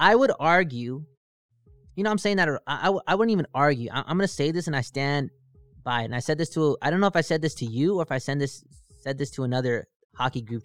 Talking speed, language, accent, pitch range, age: 280 wpm, English, American, 130-175 Hz, 20-39